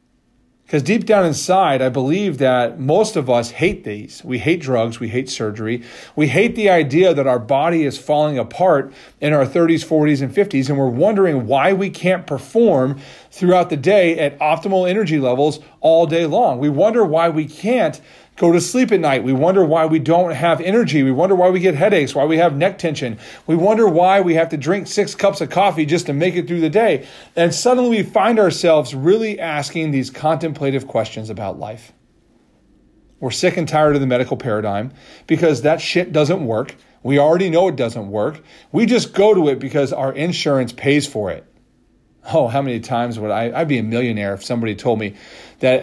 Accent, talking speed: American, 200 wpm